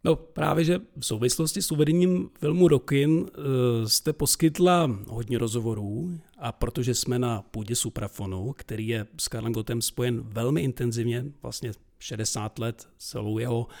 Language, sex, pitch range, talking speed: Czech, male, 115-135 Hz, 140 wpm